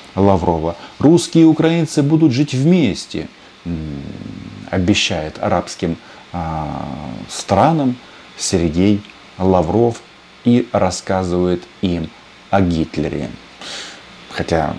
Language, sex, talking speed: Russian, male, 75 wpm